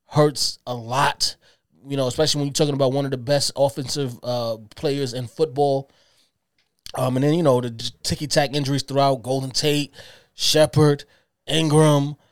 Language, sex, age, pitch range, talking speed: English, male, 20-39, 130-150 Hz, 155 wpm